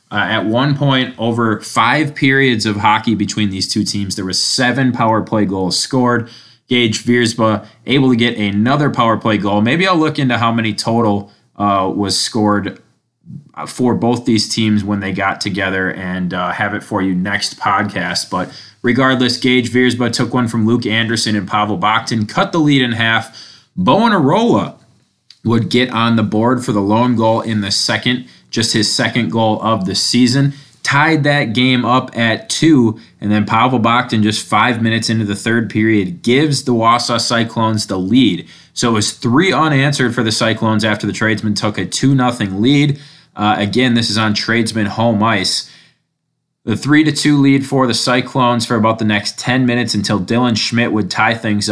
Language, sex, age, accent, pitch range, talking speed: English, male, 20-39, American, 105-125 Hz, 180 wpm